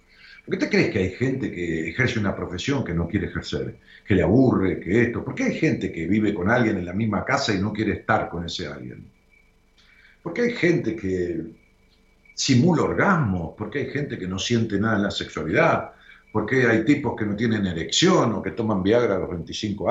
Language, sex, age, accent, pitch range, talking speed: Spanish, male, 50-69, Argentinian, 95-145 Hz, 215 wpm